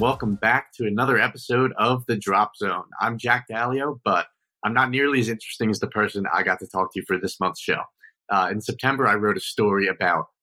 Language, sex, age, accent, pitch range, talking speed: English, male, 30-49, American, 100-130 Hz, 225 wpm